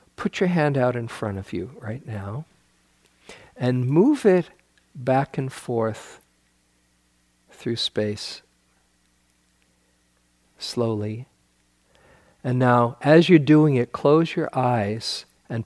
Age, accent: 50-69, American